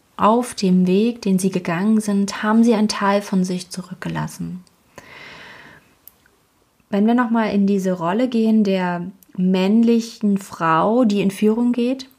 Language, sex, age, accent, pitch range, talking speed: German, female, 20-39, German, 185-235 Hz, 140 wpm